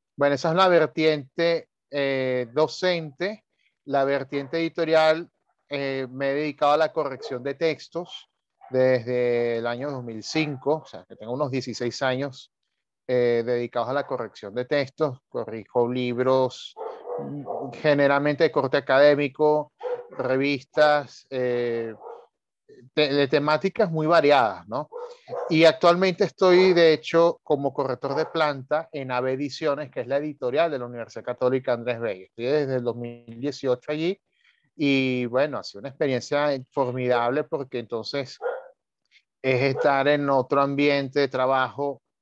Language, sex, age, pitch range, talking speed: Spanish, male, 30-49, 125-150 Hz, 130 wpm